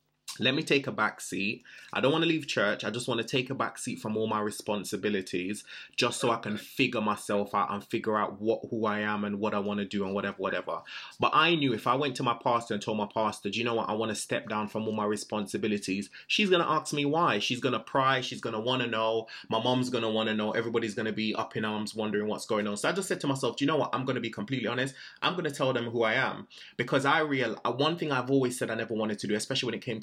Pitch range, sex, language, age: 105-130 Hz, male, English, 20-39